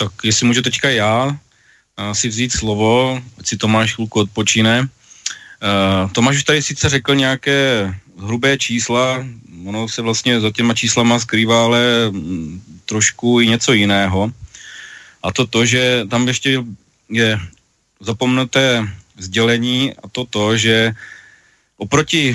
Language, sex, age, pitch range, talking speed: Slovak, male, 30-49, 105-120 Hz, 125 wpm